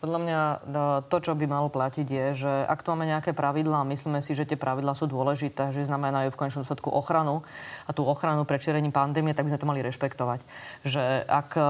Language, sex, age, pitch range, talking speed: Slovak, female, 30-49, 145-160 Hz, 205 wpm